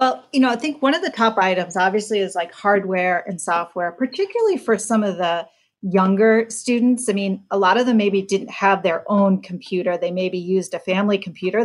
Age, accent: 40-59, American